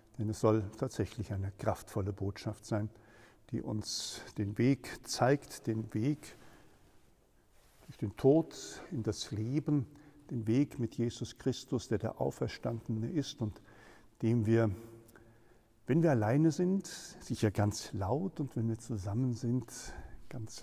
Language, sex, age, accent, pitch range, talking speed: German, male, 60-79, German, 110-135 Hz, 135 wpm